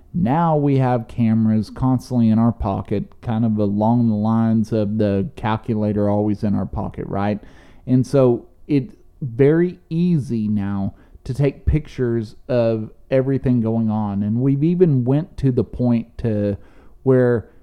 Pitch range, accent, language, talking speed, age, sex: 110-135 Hz, American, English, 145 wpm, 40-59, male